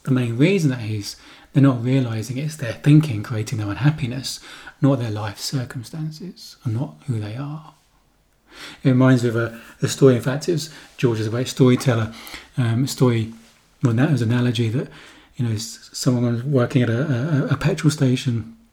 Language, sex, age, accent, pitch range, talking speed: English, male, 30-49, British, 120-140 Hz, 180 wpm